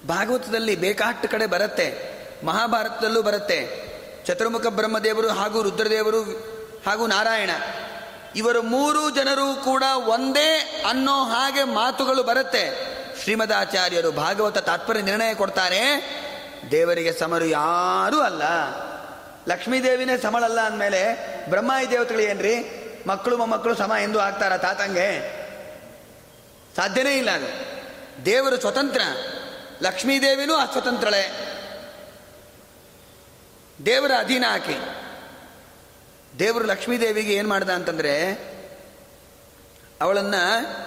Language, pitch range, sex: Kannada, 195-270 Hz, male